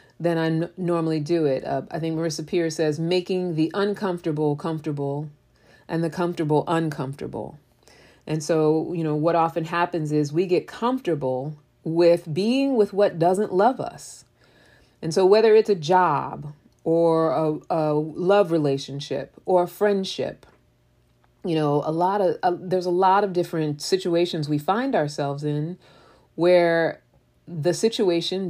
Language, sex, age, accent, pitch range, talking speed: English, female, 30-49, American, 155-190 Hz, 150 wpm